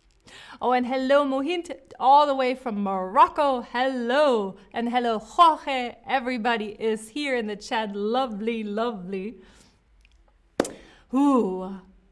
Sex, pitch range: female, 205-260 Hz